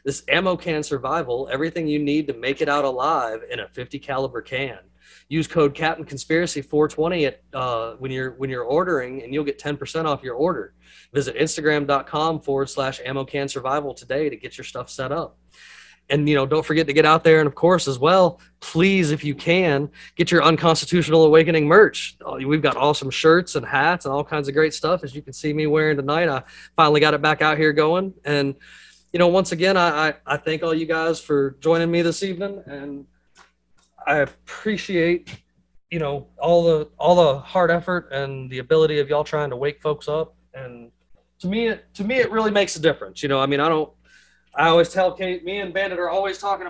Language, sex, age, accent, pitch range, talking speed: English, male, 30-49, American, 140-170 Hz, 210 wpm